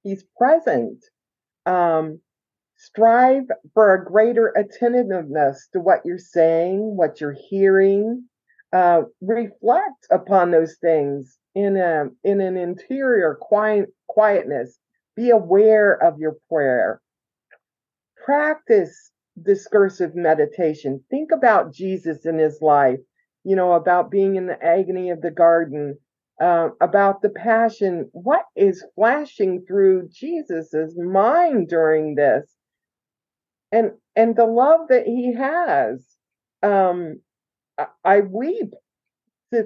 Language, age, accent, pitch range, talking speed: English, 50-69, American, 170-230 Hz, 115 wpm